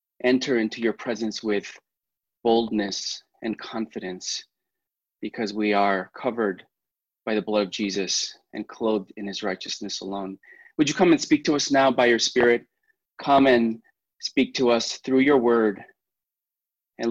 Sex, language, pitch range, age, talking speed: male, English, 115-150 Hz, 20-39, 150 wpm